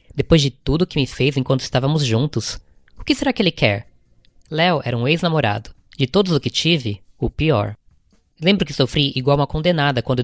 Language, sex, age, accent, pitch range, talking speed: Portuguese, female, 10-29, Brazilian, 125-165 Hz, 200 wpm